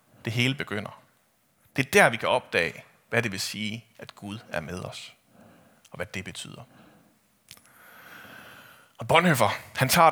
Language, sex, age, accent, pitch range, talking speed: Danish, male, 30-49, native, 105-130 Hz, 155 wpm